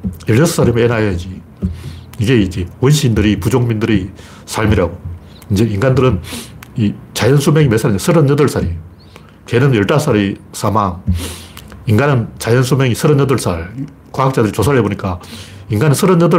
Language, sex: Korean, male